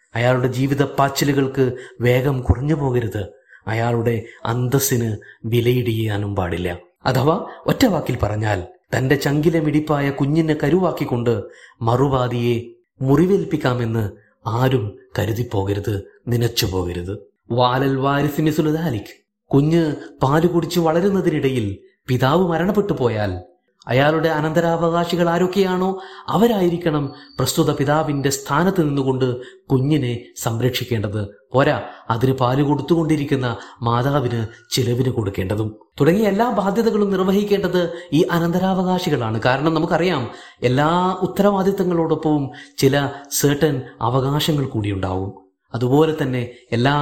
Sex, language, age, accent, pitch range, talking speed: male, Malayalam, 30-49, native, 120-160 Hz, 80 wpm